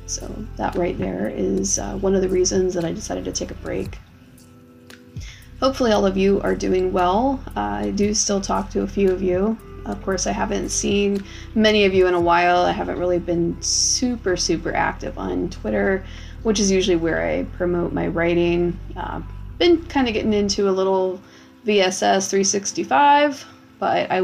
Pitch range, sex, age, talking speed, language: 170-205 Hz, female, 20-39, 185 wpm, English